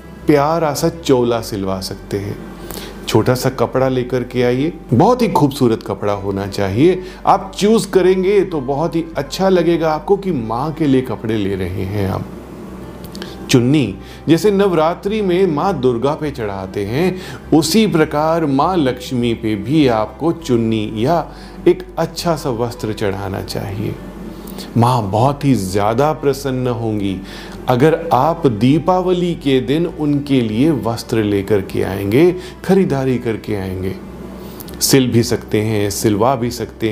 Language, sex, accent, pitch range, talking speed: Hindi, male, native, 110-170 Hz, 140 wpm